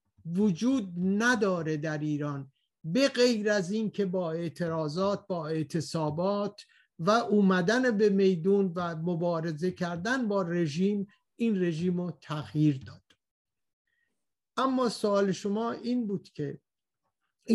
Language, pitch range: Persian, 160-200 Hz